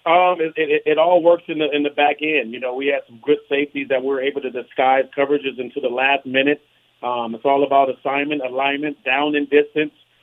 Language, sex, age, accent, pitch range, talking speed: English, male, 40-59, American, 135-160 Hz, 230 wpm